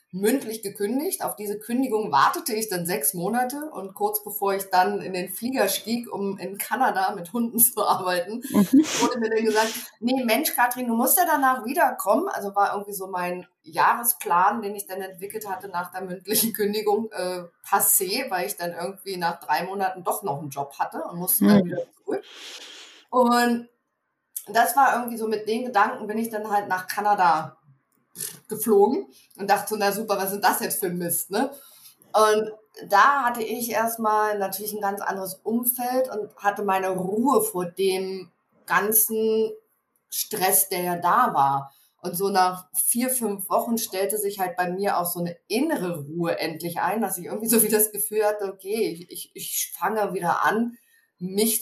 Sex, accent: female, German